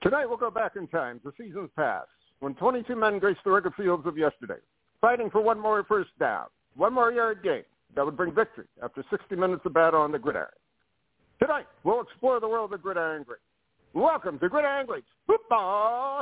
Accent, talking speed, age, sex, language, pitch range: American, 200 wpm, 60-79, male, English, 165-245 Hz